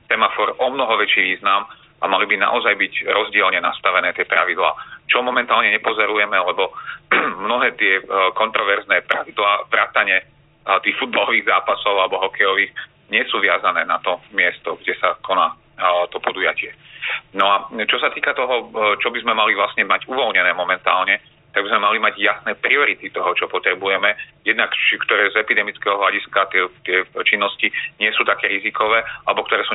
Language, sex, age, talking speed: Slovak, male, 40-59, 155 wpm